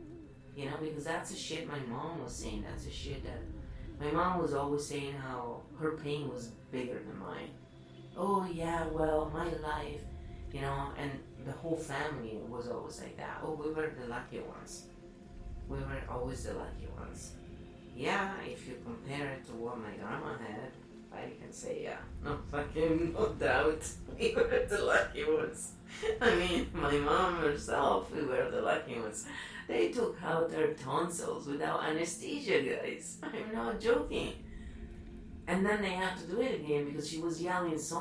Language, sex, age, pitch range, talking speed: English, female, 30-49, 125-165 Hz, 175 wpm